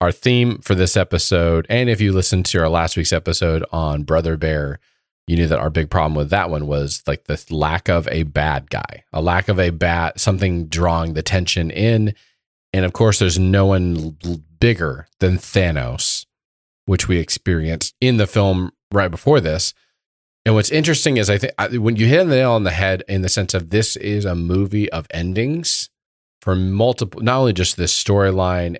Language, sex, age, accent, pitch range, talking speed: English, male, 30-49, American, 80-110 Hz, 195 wpm